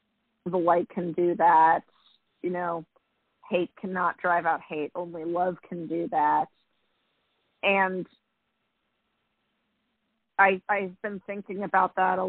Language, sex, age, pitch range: English, female, 40-59, 170-205 Hz